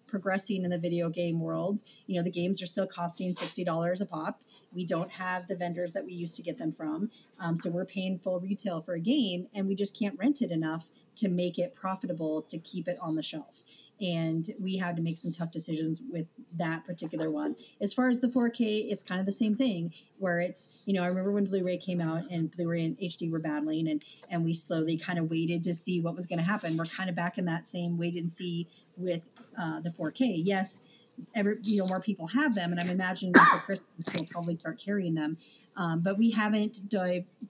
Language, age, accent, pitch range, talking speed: English, 30-49, American, 170-200 Hz, 235 wpm